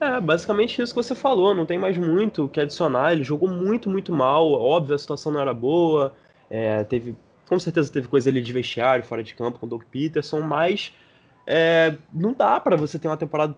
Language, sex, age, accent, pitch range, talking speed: Portuguese, male, 20-39, Brazilian, 130-180 Hz, 215 wpm